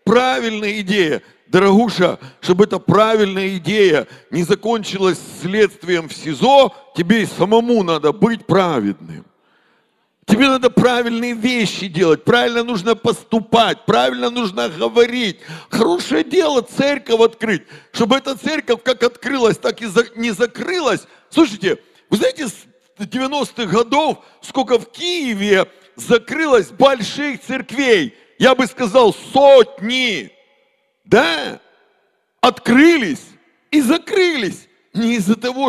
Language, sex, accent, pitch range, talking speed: Russian, male, native, 180-250 Hz, 110 wpm